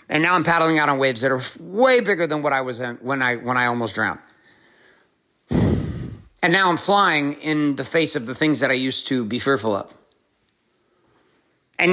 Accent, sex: American, male